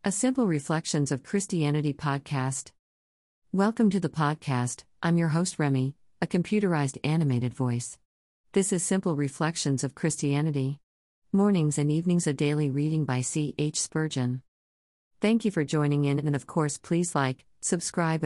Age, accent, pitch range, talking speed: 50-69, American, 130-165 Hz, 150 wpm